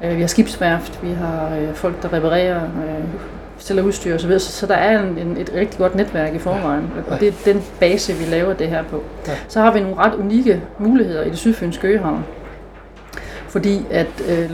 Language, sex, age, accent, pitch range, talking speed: Danish, female, 30-49, native, 160-200 Hz, 190 wpm